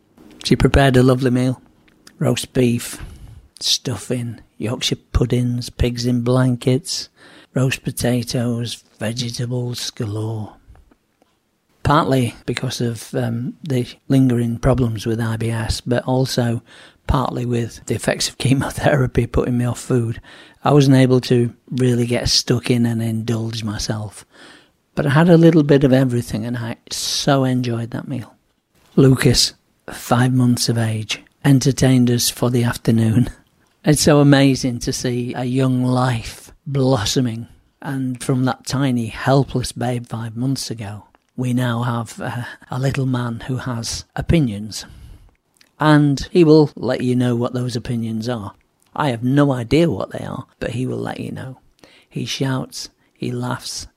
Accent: British